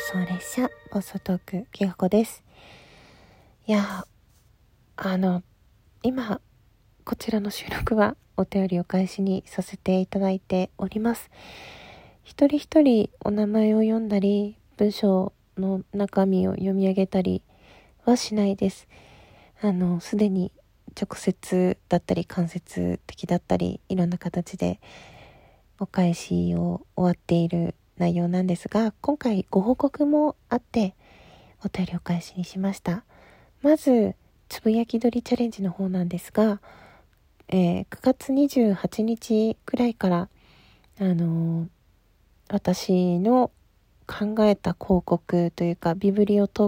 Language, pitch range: Japanese, 175-215 Hz